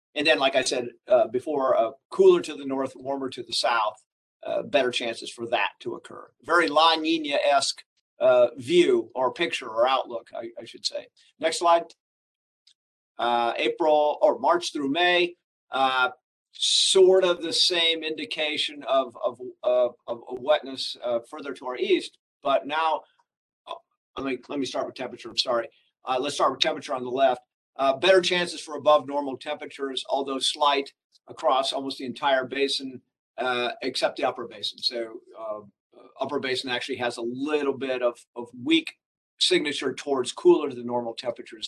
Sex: male